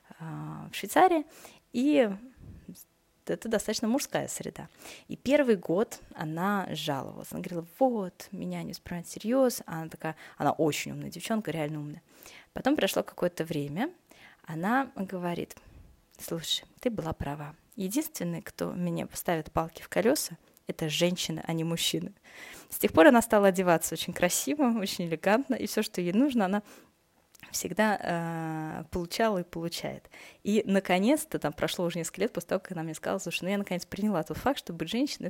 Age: 20-39